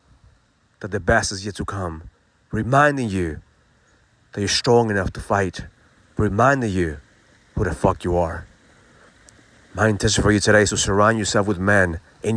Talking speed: 165 wpm